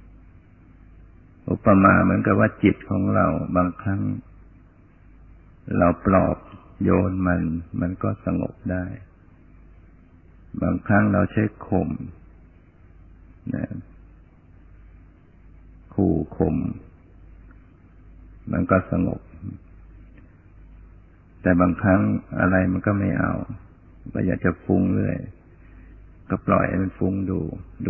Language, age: Thai, 60-79